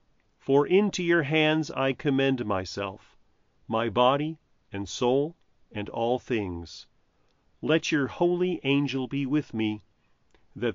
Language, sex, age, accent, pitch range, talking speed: English, male, 40-59, American, 105-155 Hz, 125 wpm